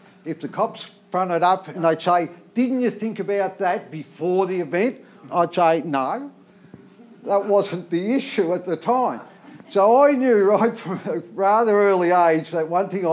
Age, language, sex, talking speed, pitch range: 50-69, English, male, 175 wpm, 155-200 Hz